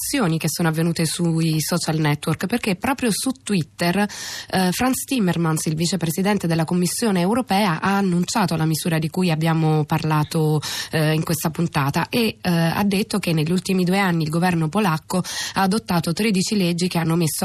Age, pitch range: 20-39, 160-195 Hz